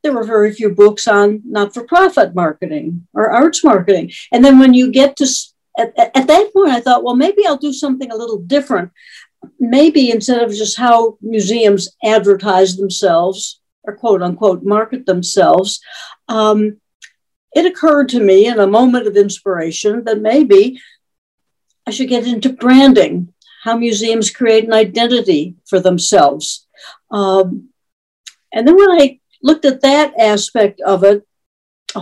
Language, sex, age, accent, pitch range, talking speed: English, female, 60-79, American, 200-265 Hz, 150 wpm